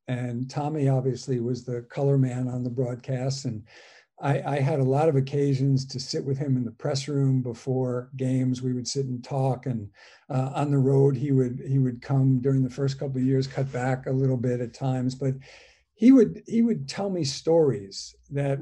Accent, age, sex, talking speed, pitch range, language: American, 50-69, male, 210 wpm, 130-155 Hz, English